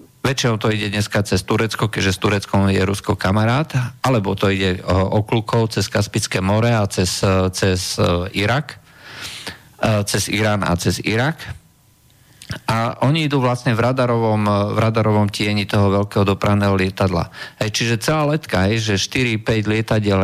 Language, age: Slovak, 50-69